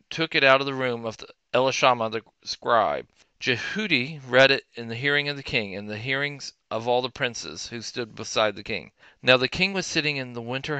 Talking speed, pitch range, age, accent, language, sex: 220 wpm, 110-135 Hz, 40-59, American, English, male